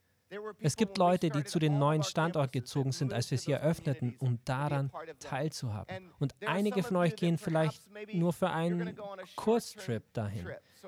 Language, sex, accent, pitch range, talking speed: German, male, German, 130-175 Hz, 155 wpm